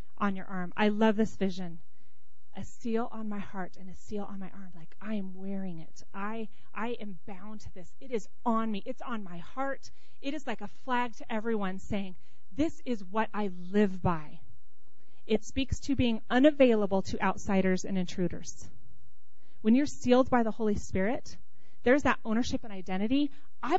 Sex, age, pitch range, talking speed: female, 30-49, 185-235 Hz, 185 wpm